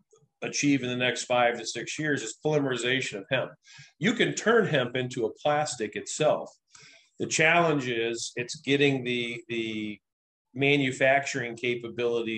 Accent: American